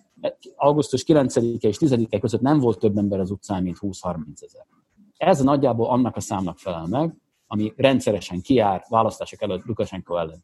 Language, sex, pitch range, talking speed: Hungarian, male, 100-135 Hz, 165 wpm